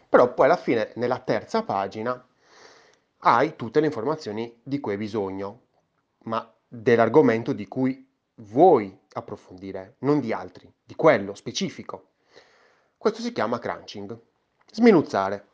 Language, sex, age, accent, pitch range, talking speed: Italian, male, 30-49, native, 110-145 Hz, 125 wpm